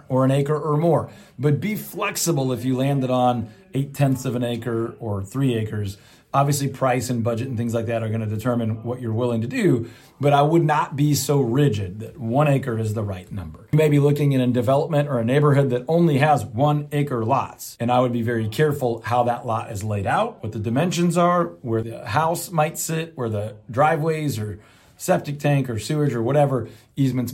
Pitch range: 115-145 Hz